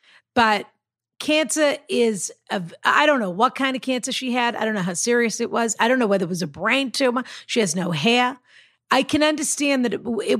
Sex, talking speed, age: female, 220 wpm, 50-69